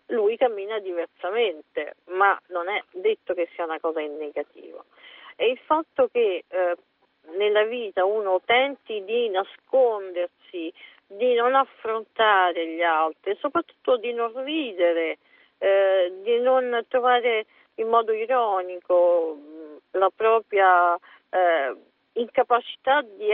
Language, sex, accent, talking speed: Italian, female, native, 115 wpm